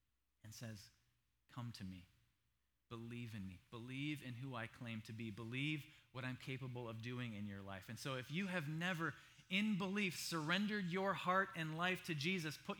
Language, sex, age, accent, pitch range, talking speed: English, male, 30-49, American, 110-165 Hz, 190 wpm